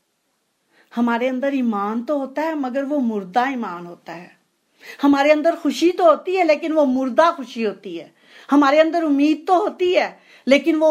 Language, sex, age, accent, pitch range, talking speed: Hindi, female, 50-69, native, 210-280 Hz, 175 wpm